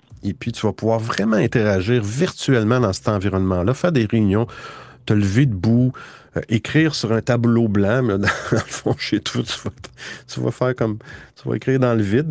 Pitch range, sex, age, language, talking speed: 100-130 Hz, male, 50-69, French, 205 wpm